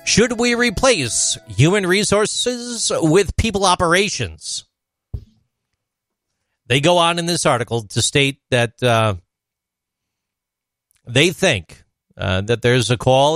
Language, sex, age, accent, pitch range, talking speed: English, male, 40-59, American, 115-155 Hz, 110 wpm